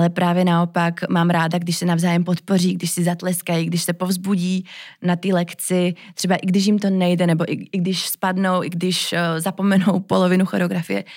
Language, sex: Czech, female